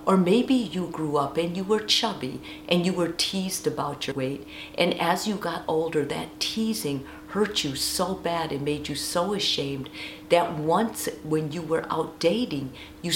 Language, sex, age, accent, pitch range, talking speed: English, female, 50-69, American, 145-185 Hz, 185 wpm